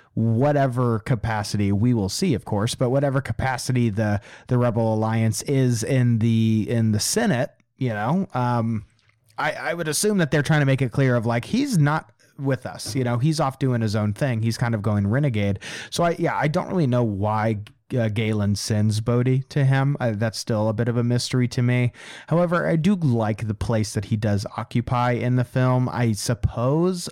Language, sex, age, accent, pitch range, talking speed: English, male, 30-49, American, 110-140 Hz, 205 wpm